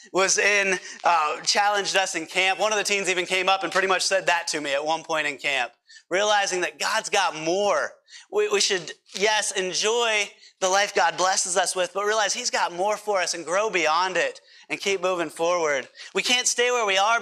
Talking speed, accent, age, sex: 220 wpm, American, 30-49, male